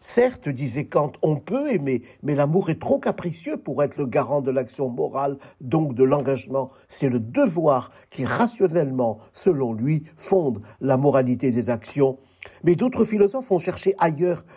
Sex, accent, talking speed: male, French, 160 wpm